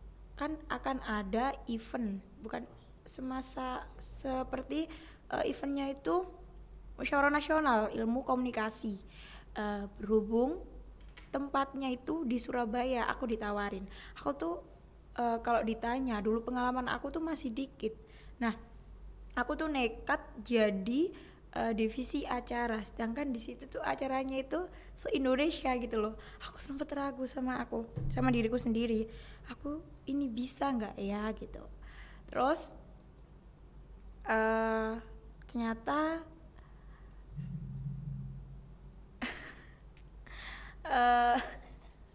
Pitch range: 220-280 Hz